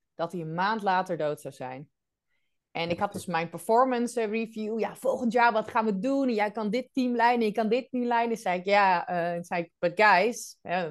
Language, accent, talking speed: Dutch, Dutch, 235 wpm